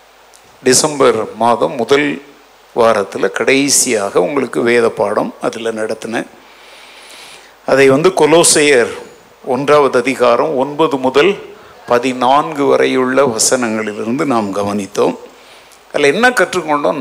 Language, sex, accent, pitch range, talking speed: Tamil, male, native, 130-215 Hz, 90 wpm